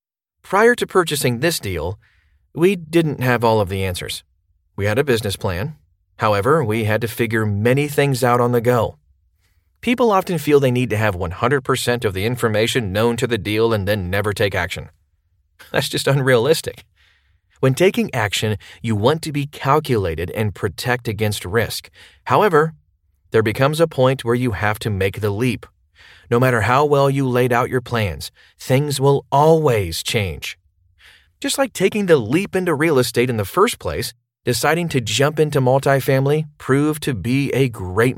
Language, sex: English, male